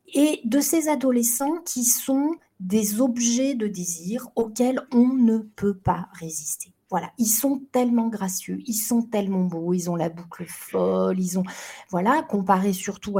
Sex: female